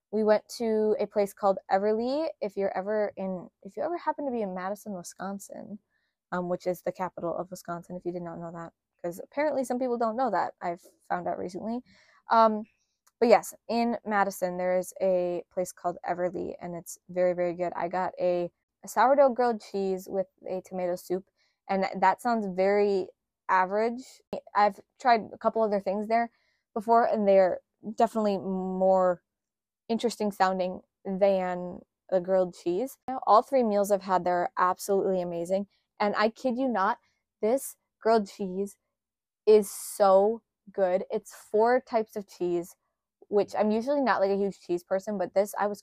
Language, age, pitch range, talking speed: English, 20-39, 185-215 Hz, 175 wpm